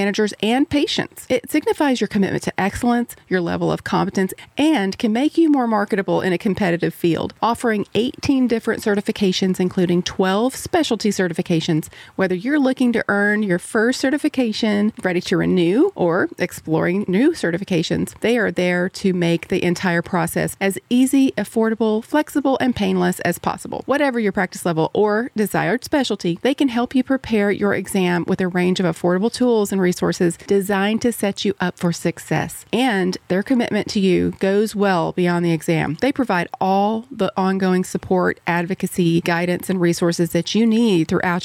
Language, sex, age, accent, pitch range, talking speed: English, female, 30-49, American, 180-230 Hz, 170 wpm